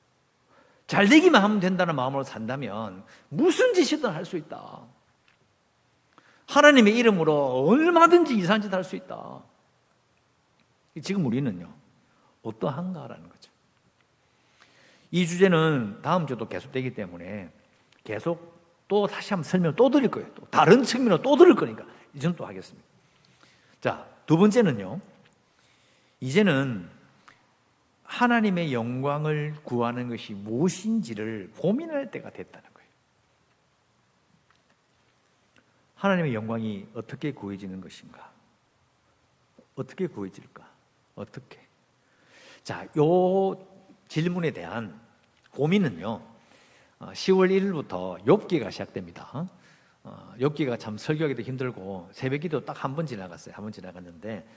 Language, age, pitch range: English, 50-69, 115-195 Hz